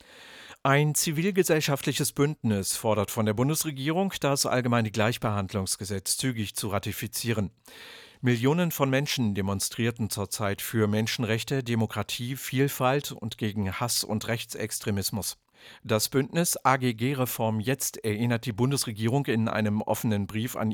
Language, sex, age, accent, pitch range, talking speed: English, male, 50-69, German, 110-130 Hz, 115 wpm